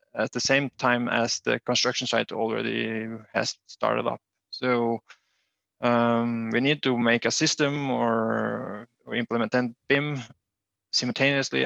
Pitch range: 115-130 Hz